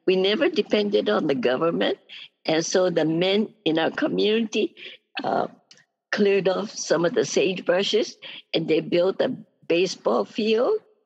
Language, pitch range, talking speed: English, 180-245 Hz, 140 wpm